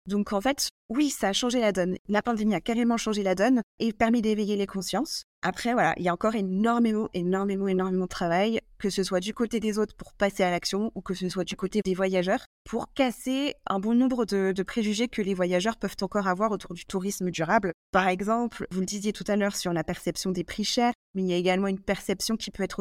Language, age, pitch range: French, 20-39, 185-215 Hz